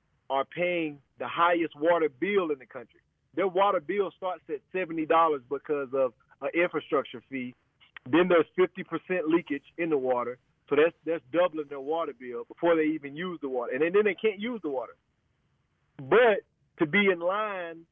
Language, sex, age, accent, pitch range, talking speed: English, male, 30-49, American, 140-175 Hz, 180 wpm